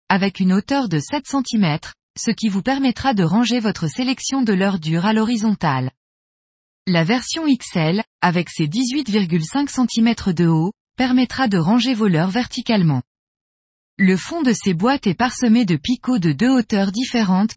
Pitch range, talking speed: 180-245 Hz, 160 wpm